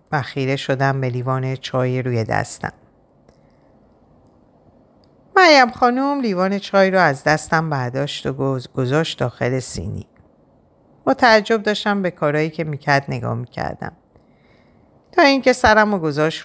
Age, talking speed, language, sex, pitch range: 50-69, 125 wpm, Persian, female, 135-205 Hz